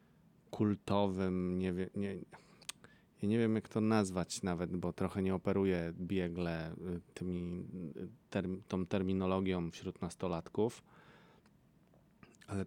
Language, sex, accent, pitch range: Polish, male, native, 90-100 Hz